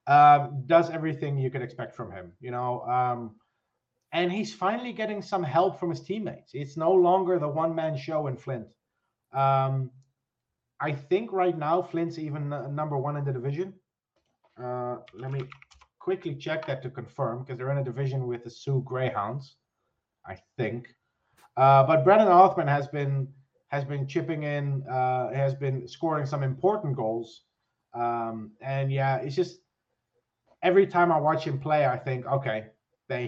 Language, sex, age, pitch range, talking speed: English, male, 30-49, 135-170 Hz, 165 wpm